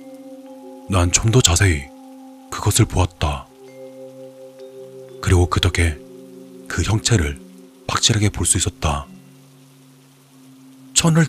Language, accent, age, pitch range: Korean, native, 40-59, 95-145 Hz